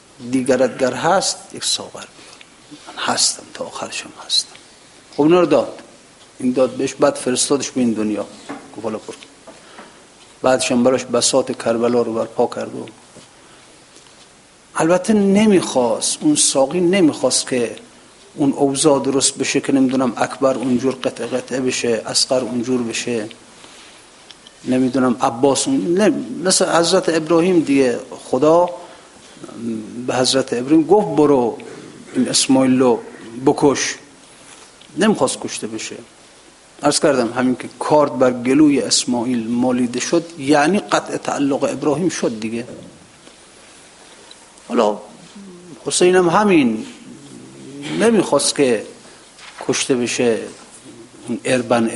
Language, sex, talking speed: Persian, male, 105 wpm